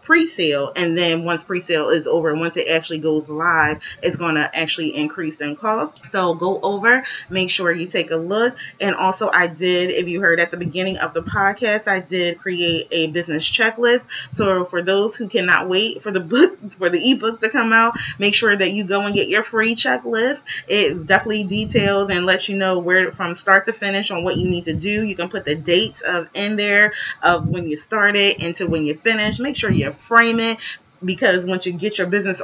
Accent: American